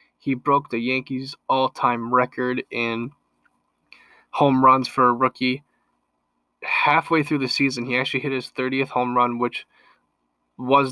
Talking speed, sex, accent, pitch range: 135 wpm, male, American, 120-140 Hz